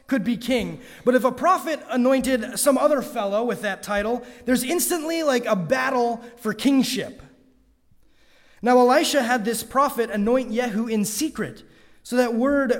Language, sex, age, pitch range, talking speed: English, male, 30-49, 205-255 Hz, 155 wpm